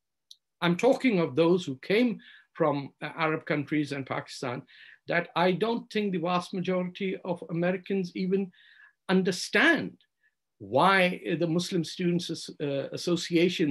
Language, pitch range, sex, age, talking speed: English, 170-230 Hz, male, 60-79, 125 wpm